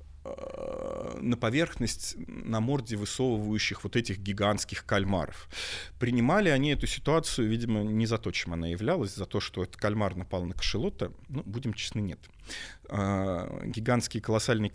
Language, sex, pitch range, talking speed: Russian, male, 100-120 Hz, 140 wpm